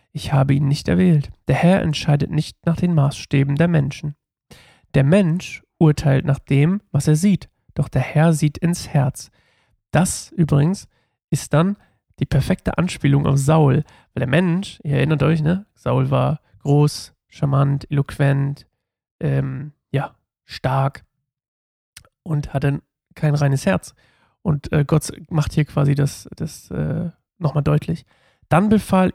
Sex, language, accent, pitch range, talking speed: male, German, German, 140-165 Hz, 145 wpm